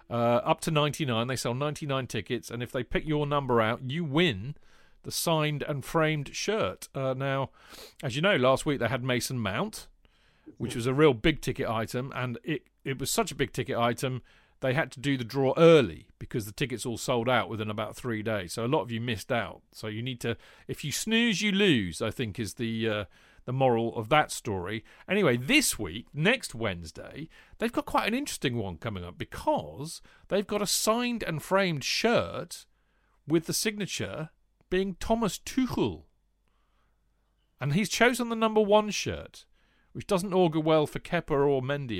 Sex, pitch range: male, 120-160 Hz